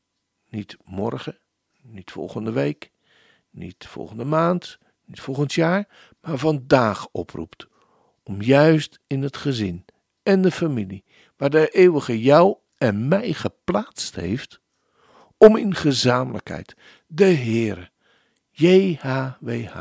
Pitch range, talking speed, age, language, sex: 110-165 Hz, 110 wpm, 60-79, Dutch, male